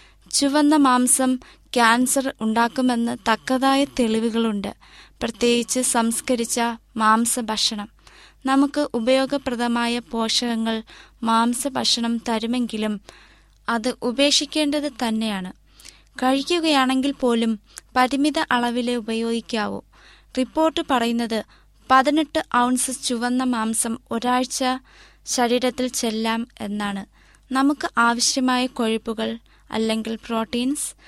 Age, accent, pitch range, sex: 20-39, native, 230-265 Hz, female